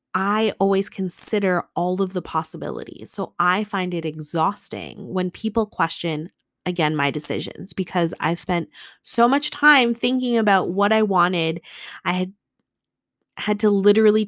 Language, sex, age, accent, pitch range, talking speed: English, female, 20-39, American, 170-205 Hz, 145 wpm